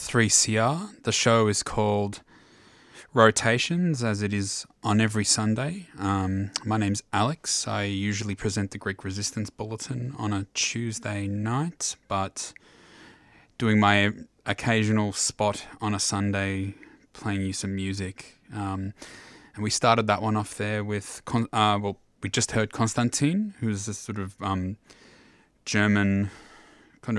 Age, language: 20-39, English